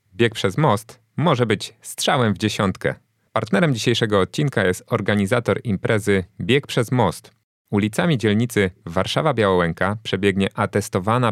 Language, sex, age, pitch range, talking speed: Polish, male, 30-49, 85-115 Hz, 115 wpm